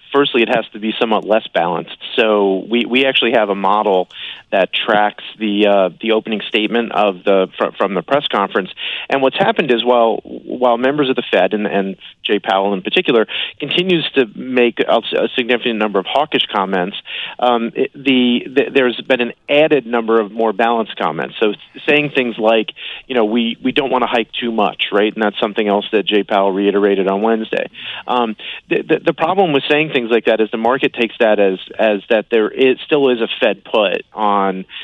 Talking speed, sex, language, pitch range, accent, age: 205 wpm, male, English, 105-125 Hz, American, 30-49